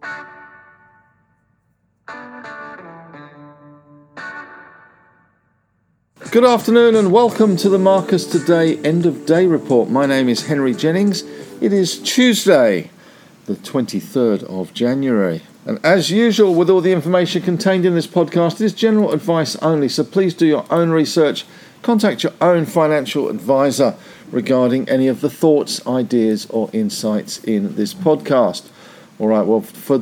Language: English